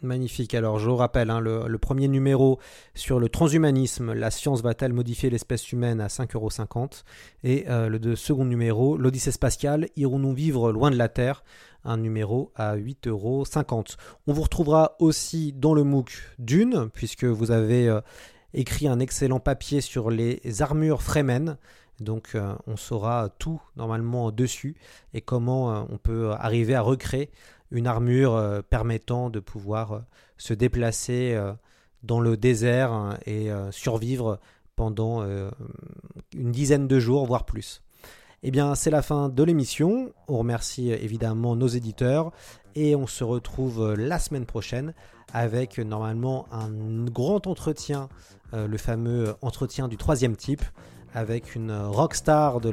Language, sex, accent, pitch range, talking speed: French, male, French, 110-135 Hz, 150 wpm